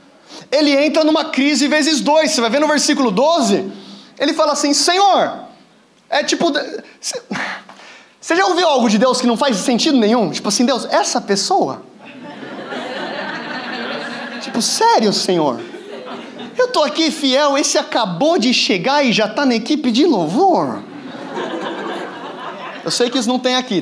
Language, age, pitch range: Portuguese, 20-39, 245-310 Hz